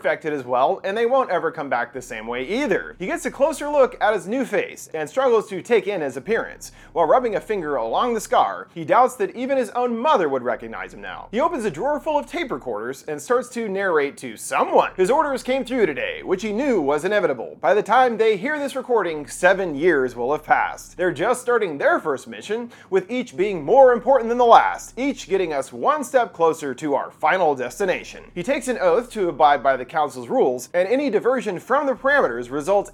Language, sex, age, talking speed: English, male, 30-49, 225 wpm